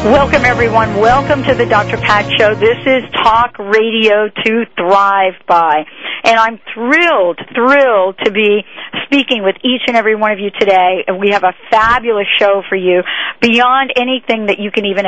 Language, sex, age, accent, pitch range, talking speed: English, female, 50-69, American, 195-240 Hz, 170 wpm